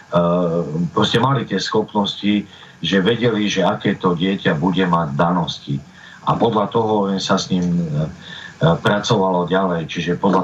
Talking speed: 145 wpm